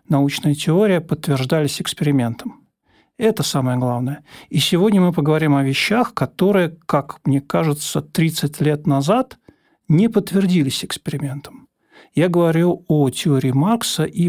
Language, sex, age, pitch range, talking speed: Russian, male, 50-69, 135-165 Hz, 120 wpm